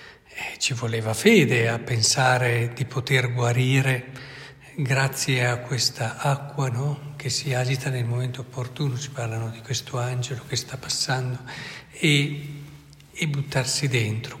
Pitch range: 120-145 Hz